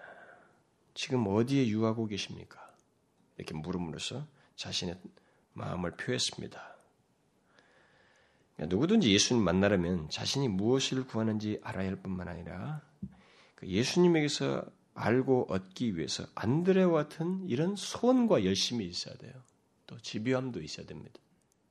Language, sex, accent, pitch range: Korean, male, native, 95-130 Hz